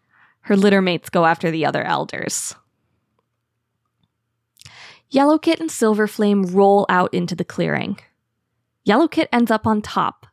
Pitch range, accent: 175-220 Hz, American